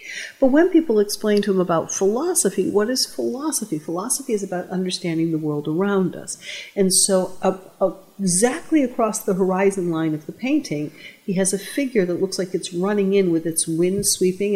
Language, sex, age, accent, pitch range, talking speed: English, female, 50-69, American, 170-210 Hz, 185 wpm